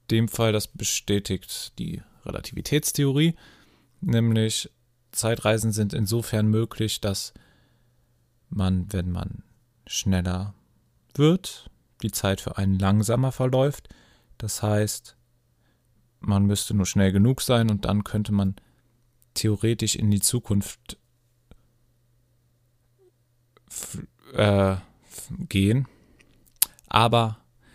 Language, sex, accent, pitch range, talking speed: German, male, German, 100-120 Hz, 95 wpm